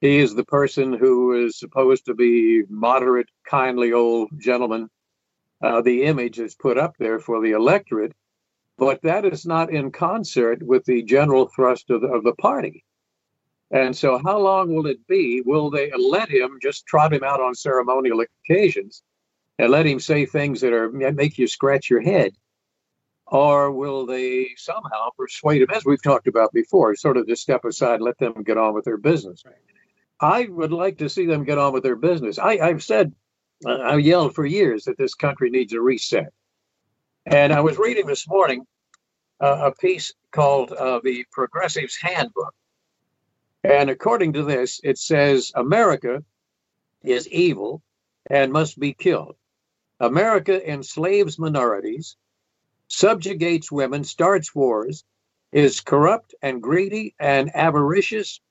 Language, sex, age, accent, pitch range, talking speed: English, male, 50-69, American, 130-175 Hz, 160 wpm